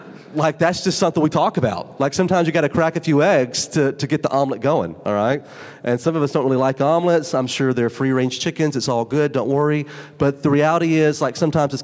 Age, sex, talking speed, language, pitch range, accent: 30-49, male, 250 wpm, English, 145-190 Hz, American